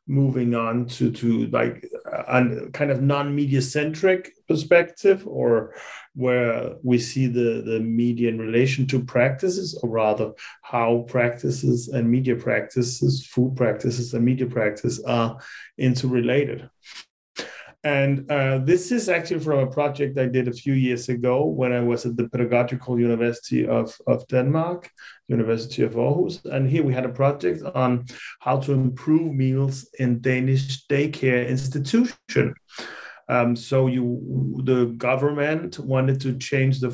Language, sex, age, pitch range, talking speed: English, male, 30-49, 120-140 Hz, 140 wpm